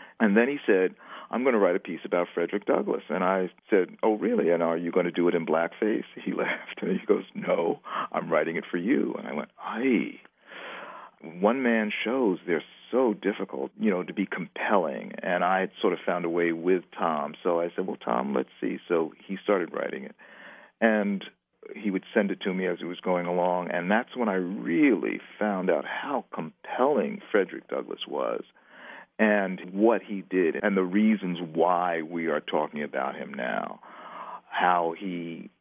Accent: American